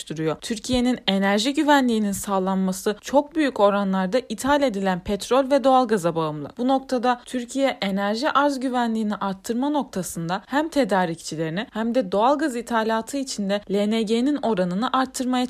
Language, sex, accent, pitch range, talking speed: Turkish, female, native, 195-265 Hz, 120 wpm